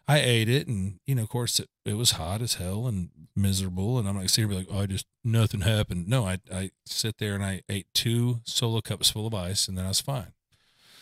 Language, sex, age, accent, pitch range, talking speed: English, male, 40-59, American, 95-115 Hz, 245 wpm